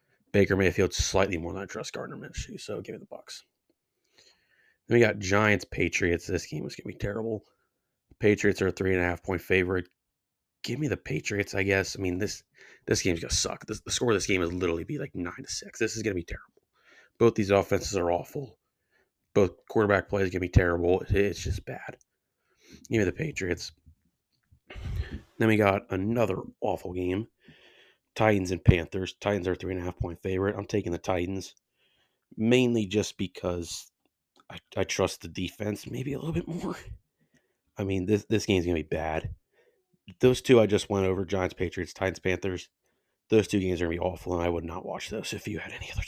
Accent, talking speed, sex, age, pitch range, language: American, 205 wpm, male, 30-49, 90-110 Hz, English